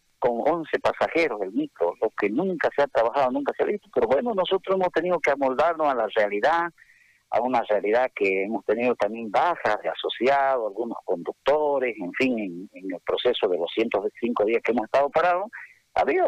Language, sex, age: Spanish, male, 50-69